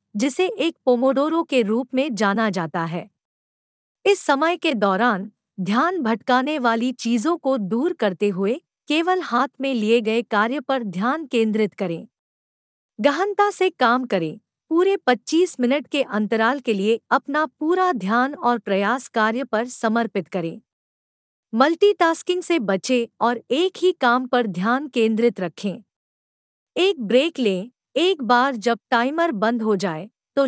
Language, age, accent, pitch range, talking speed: Hindi, 50-69, native, 220-290 Hz, 145 wpm